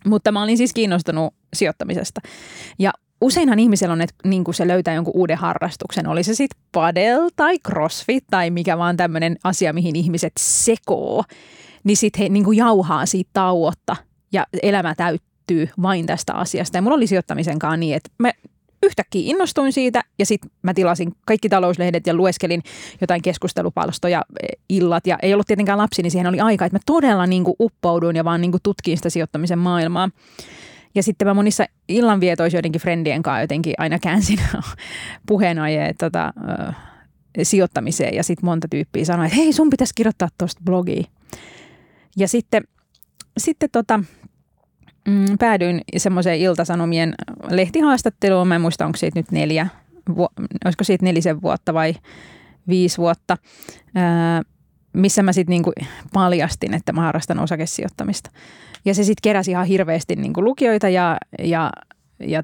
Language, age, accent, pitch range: Finnish, 20-39, native, 170-205 Hz